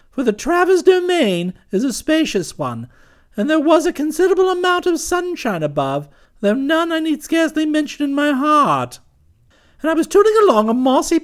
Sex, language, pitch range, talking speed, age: male, English, 210-315 Hz, 175 wpm, 50-69